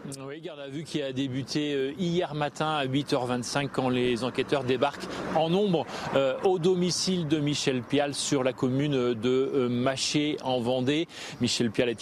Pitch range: 130-165 Hz